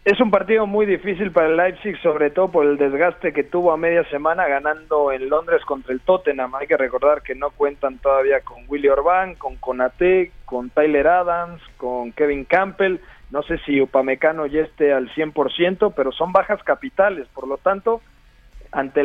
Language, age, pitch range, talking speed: Spanish, 40-59, 140-190 Hz, 185 wpm